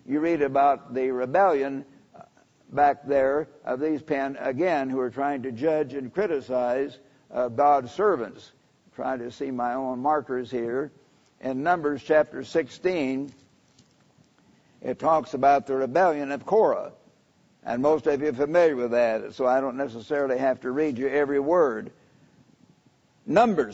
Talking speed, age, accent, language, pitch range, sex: 145 wpm, 60-79, American, English, 140-175 Hz, male